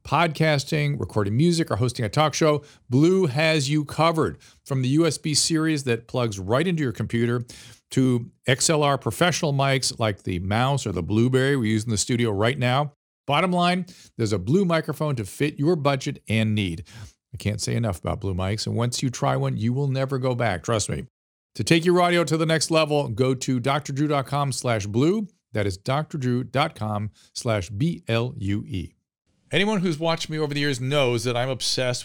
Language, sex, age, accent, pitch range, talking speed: English, male, 50-69, American, 110-150 Hz, 180 wpm